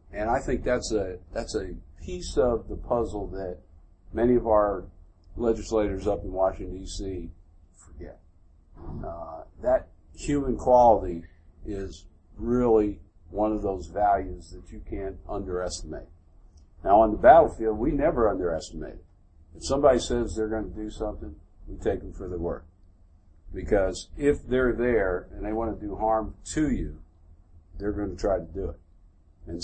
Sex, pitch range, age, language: male, 85-110 Hz, 50-69, English